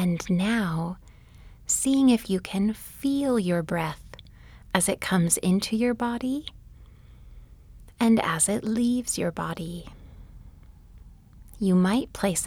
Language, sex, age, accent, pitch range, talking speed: English, female, 30-49, American, 165-220 Hz, 115 wpm